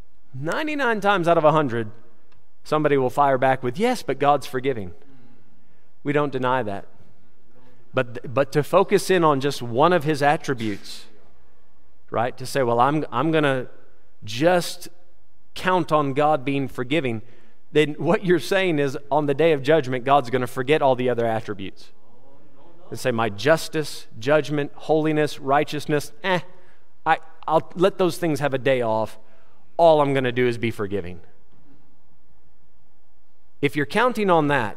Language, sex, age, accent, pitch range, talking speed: English, male, 40-59, American, 125-170 Hz, 155 wpm